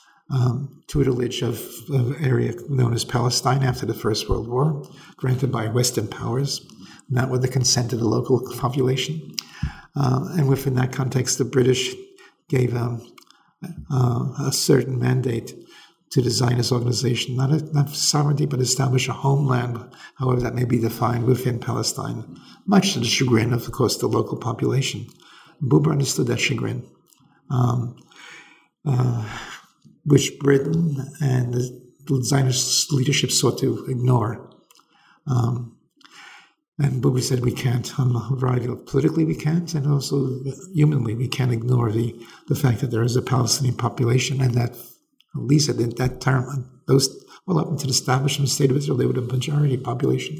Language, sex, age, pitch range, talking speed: English, male, 50-69, 125-140 Hz, 155 wpm